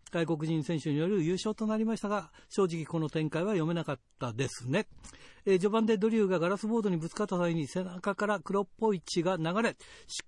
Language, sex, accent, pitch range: Japanese, male, native, 160-205 Hz